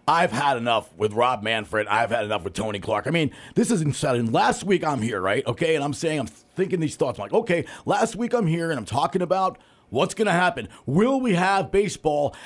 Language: English